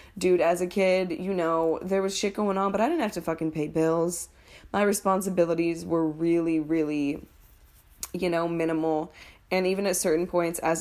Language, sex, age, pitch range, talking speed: English, female, 20-39, 165-195 Hz, 185 wpm